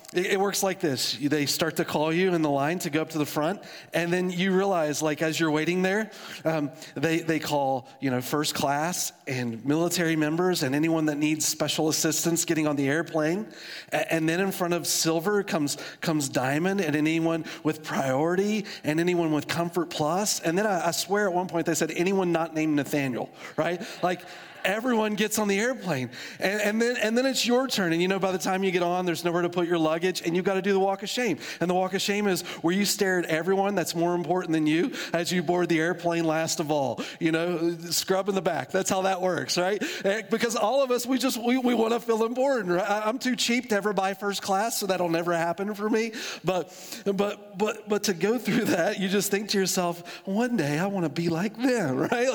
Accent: American